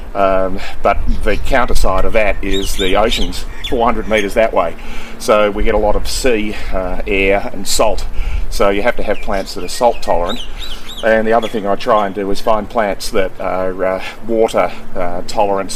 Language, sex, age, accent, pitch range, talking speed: English, male, 40-59, Australian, 100-115 Hz, 195 wpm